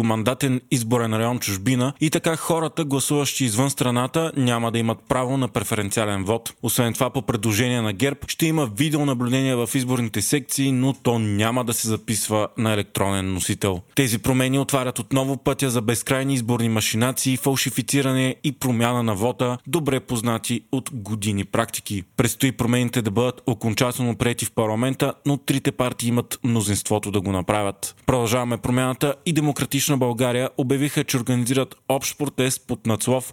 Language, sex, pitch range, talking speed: Bulgarian, male, 115-135 Hz, 155 wpm